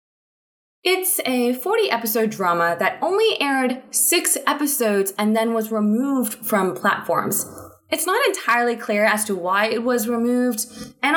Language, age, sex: English, 20-39, female